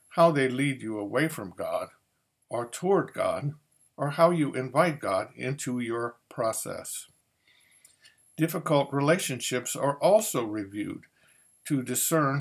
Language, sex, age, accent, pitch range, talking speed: English, male, 50-69, American, 125-155 Hz, 120 wpm